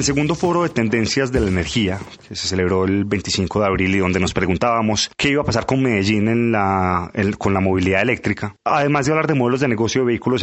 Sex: male